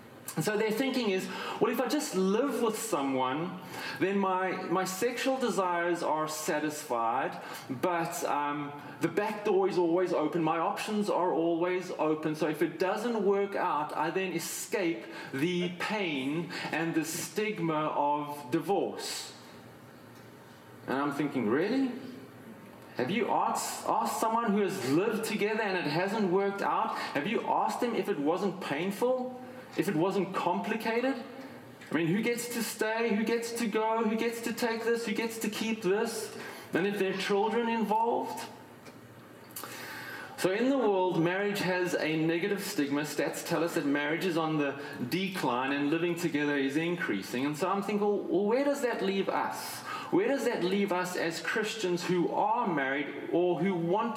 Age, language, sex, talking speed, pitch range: 30-49, English, male, 165 wpm, 160-225 Hz